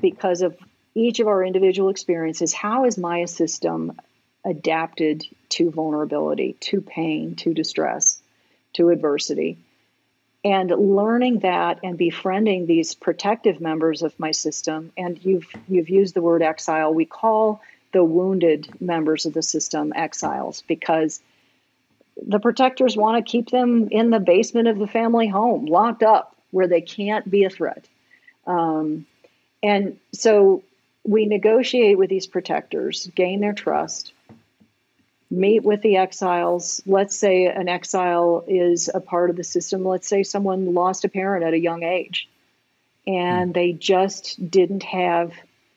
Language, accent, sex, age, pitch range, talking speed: English, American, female, 50-69, 170-205 Hz, 145 wpm